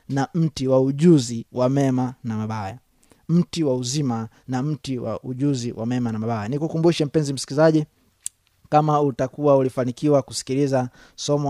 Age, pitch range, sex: 20-39, 125-155 Hz, male